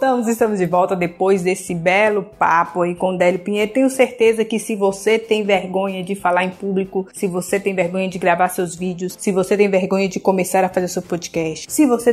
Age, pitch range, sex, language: 20-39, 185-225 Hz, female, Portuguese